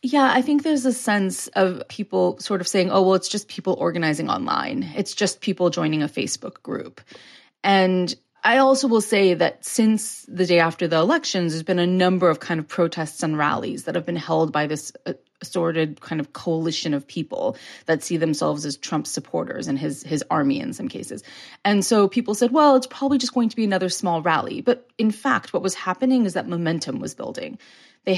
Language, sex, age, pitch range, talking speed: English, female, 30-49, 160-210 Hz, 210 wpm